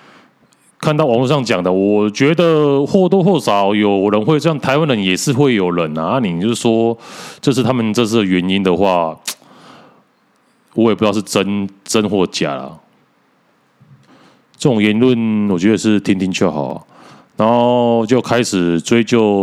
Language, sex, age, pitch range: Chinese, male, 30-49, 95-130 Hz